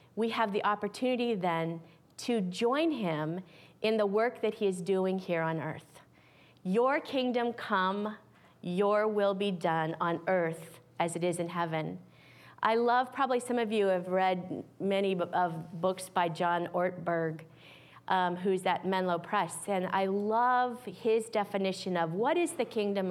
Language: English